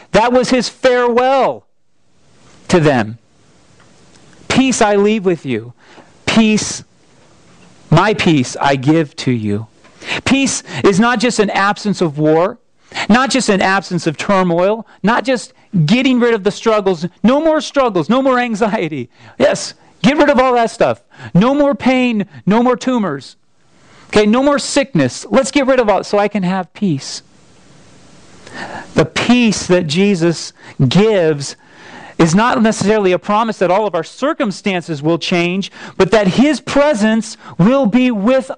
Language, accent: English, American